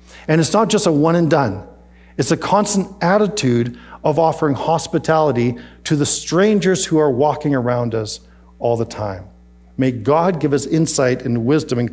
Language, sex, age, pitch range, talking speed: English, male, 50-69, 115-175 Hz, 170 wpm